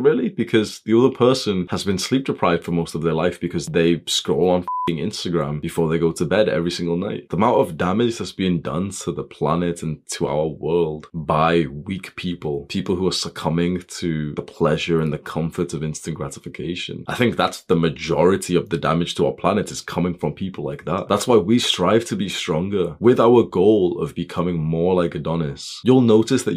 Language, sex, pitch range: English, male, 85-105 Hz